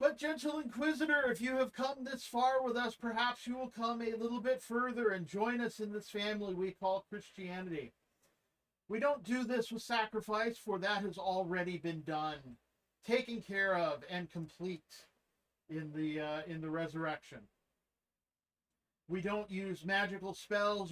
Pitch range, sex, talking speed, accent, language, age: 175-230 Hz, male, 155 wpm, American, English, 50-69